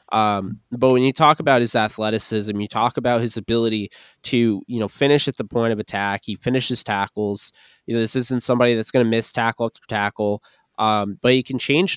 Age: 20-39